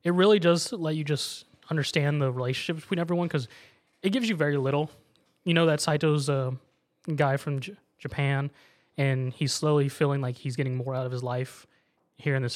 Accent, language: American, English